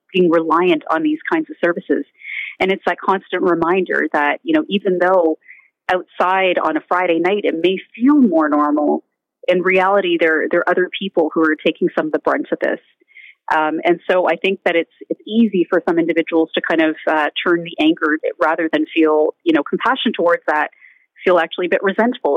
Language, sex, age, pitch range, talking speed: English, female, 30-49, 165-250 Hz, 200 wpm